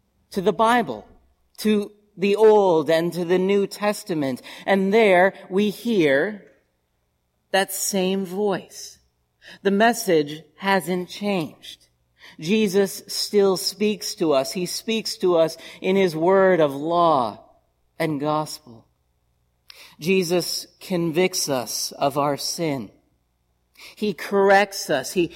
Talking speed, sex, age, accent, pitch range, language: 115 wpm, male, 50-69, American, 125-190 Hz, English